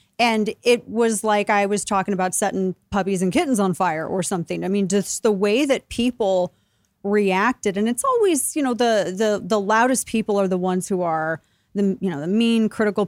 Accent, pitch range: American, 180-215 Hz